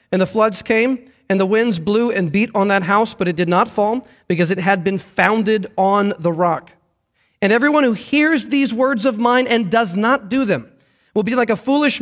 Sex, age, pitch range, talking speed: male, 40-59, 185-225 Hz, 220 wpm